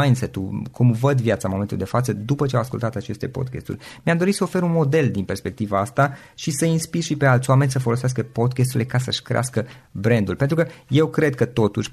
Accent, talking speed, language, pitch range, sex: native, 205 wpm, Romanian, 105-135 Hz, male